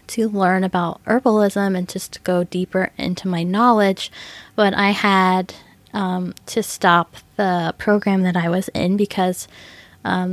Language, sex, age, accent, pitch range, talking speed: English, female, 10-29, American, 180-205 Hz, 145 wpm